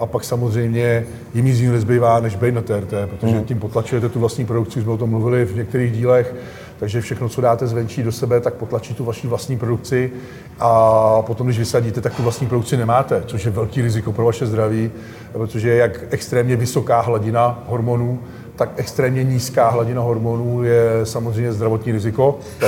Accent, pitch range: native, 115-125 Hz